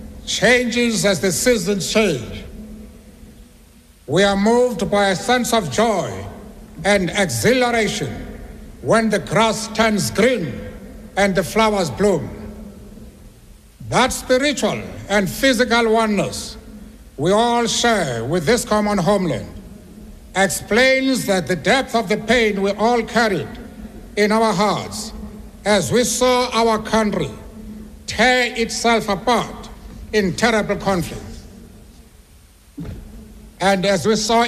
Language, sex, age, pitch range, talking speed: English, male, 60-79, 195-230 Hz, 110 wpm